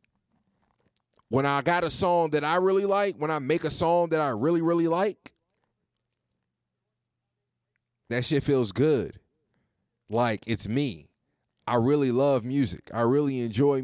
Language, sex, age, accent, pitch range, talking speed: English, male, 30-49, American, 110-145 Hz, 145 wpm